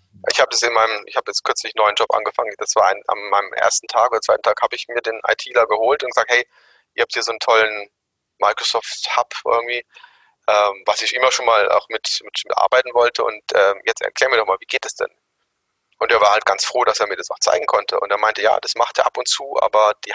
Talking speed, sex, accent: 250 wpm, male, German